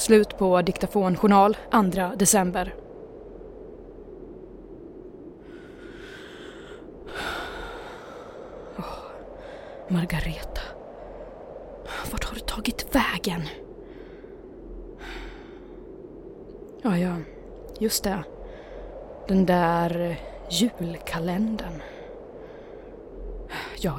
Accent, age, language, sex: native, 20-39, Swedish, female